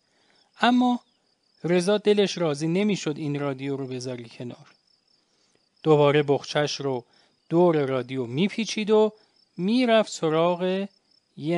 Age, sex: 30-49, male